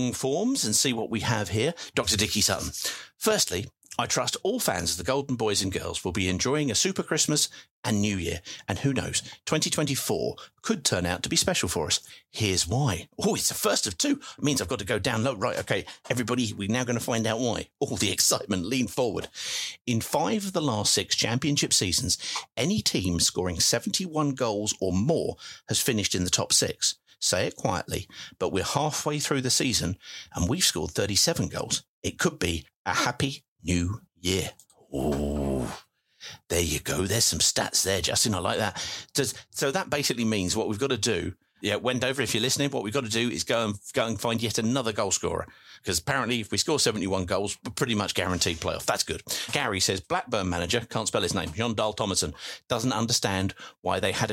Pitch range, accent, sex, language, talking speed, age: 100-135 Hz, British, male, English, 210 wpm, 50-69